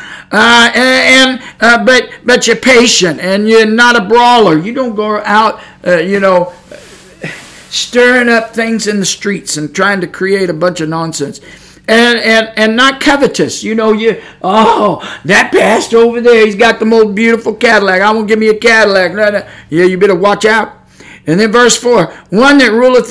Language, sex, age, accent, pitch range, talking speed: English, male, 50-69, American, 180-225 Hz, 190 wpm